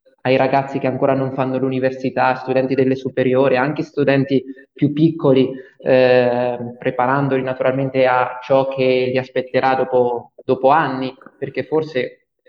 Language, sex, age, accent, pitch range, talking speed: Italian, male, 20-39, native, 130-145 Hz, 130 wpm